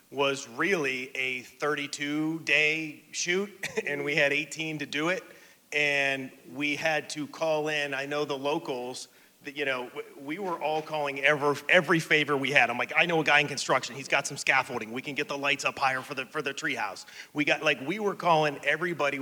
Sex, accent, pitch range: male, American, 125-150 Hz